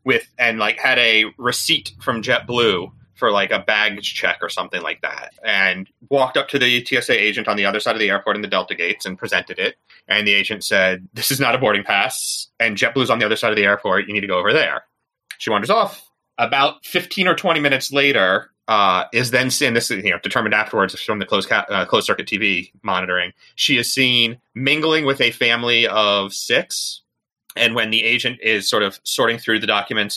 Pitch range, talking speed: 105-135 Hz, 220 wpm